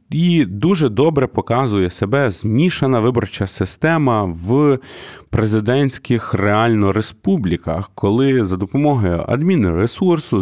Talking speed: 100 wpm